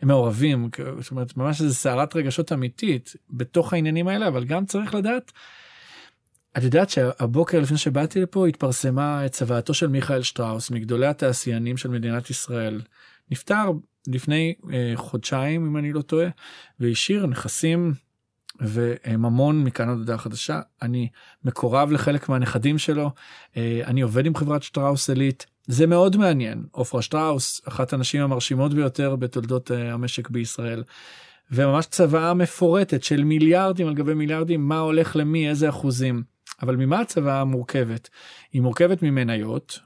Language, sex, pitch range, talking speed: English, male, 125-155 Hz, 135 wpm